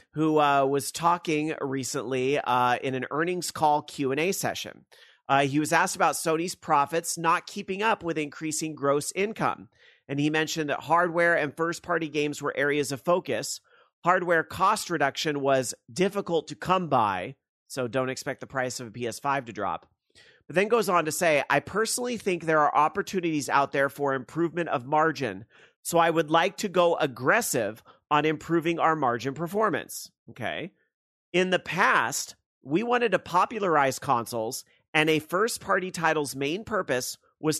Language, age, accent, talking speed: English, 40-59, American, 165 wpm